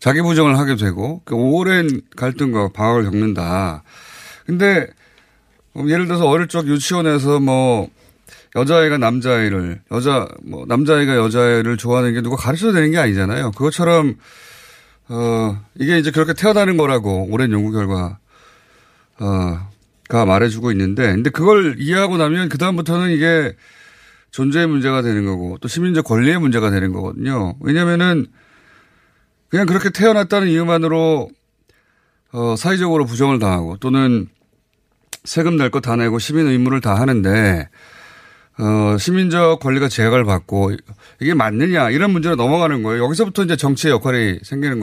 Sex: male